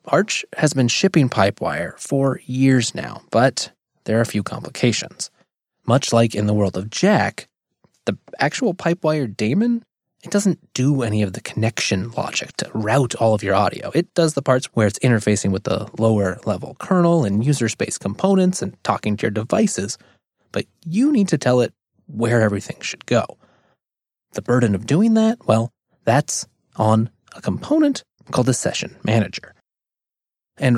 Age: 20-39